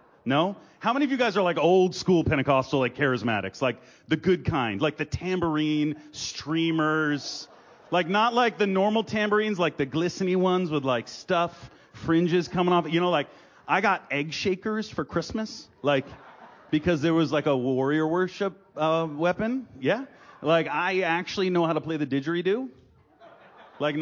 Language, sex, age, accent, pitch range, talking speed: English, male, 30-49, American, 140-180 Hz, 165 wpm